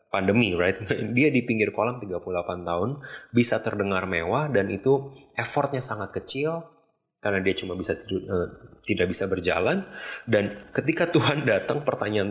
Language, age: Indonesian, 20-39